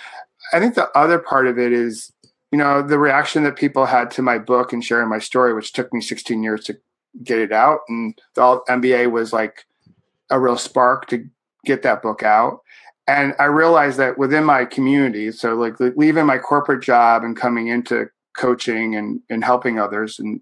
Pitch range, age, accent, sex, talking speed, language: 120-140 Hz, 40-59, American, male, 195 wpm, English